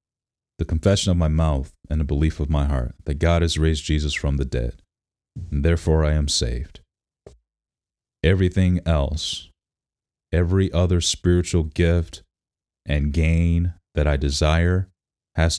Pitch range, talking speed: 75-85 Hz, 140 wpm